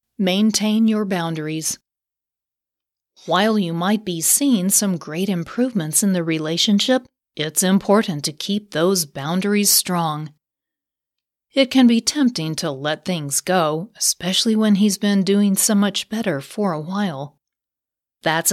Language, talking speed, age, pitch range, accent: English, 135 wpm, 40-59, 165-210 Hz, American